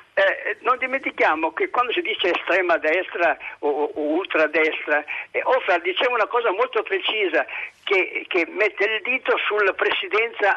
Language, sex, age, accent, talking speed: Italian, male, 60-79, native, 155 wpm